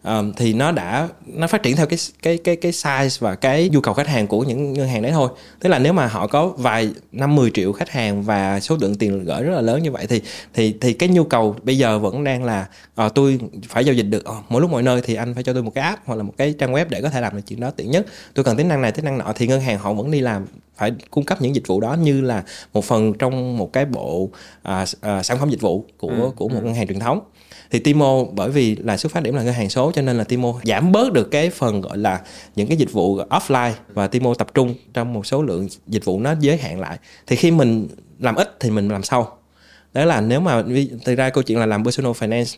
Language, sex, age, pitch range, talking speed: Vietnamese, male, 20-39, 110-140 Hz, 270 wpm